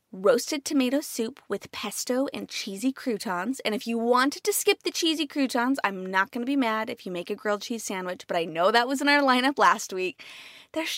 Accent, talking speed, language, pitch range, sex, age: American, 225 wpm, English, 190-260 Hz, female, 20-39